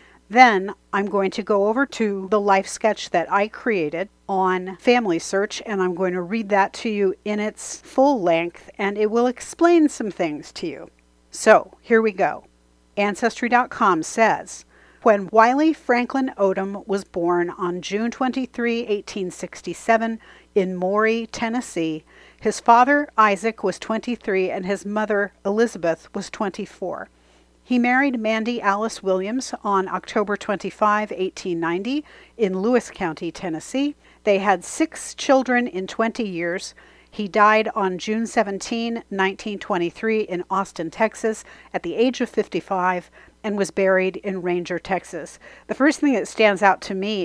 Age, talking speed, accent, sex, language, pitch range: 50-69, 145 wpm, American, female, English, 185-225 Hz